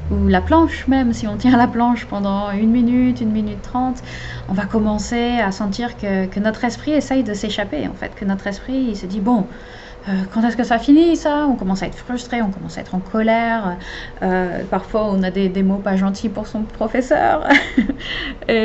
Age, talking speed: 30-49, 215 wpm